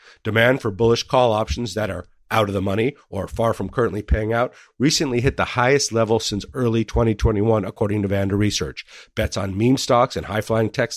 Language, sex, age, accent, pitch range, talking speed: English, male, 50-69, American, 100-120 Hz, 195 wpm